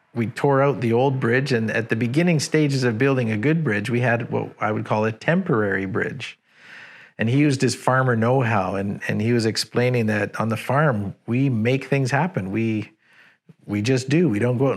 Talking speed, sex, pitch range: 210 wpm, male, 110-135 Hz